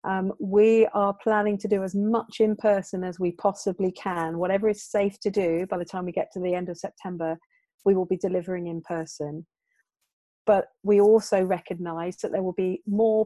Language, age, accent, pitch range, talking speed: English, 40-59, British, 180-210 Hz, 200 wpm